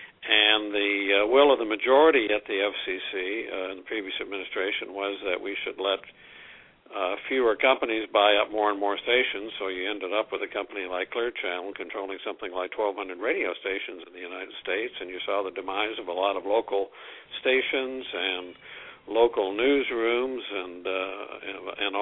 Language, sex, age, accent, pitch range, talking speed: English, male, 60-79, American, 100-160 Hz, 185 wpm